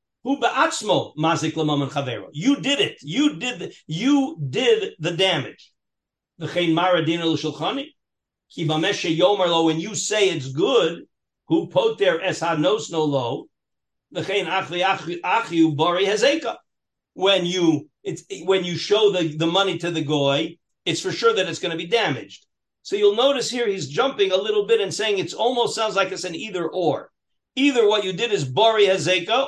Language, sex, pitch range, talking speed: English, male, 150-215 Hz, 125 wpm